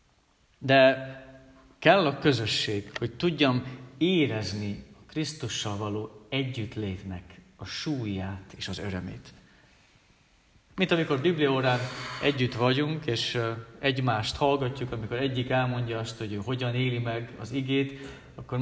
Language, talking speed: Hungarian, 115 wpm